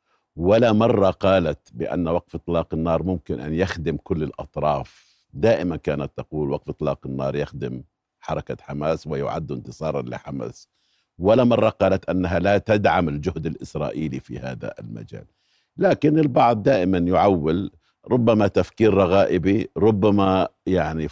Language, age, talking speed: Arabic, 50-69, 125 wpm